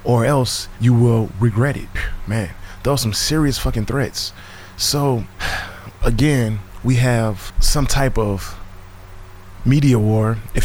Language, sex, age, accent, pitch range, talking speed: English, male, 20-39, American, 95-125 Hz, 130 wpm